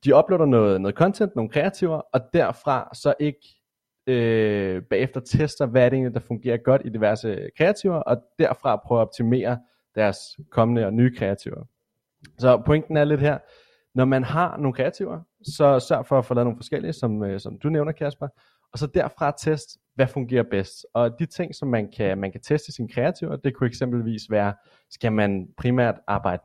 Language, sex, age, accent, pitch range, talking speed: Danish, male, 30-49, native, 110-145 Hz, 190 wpm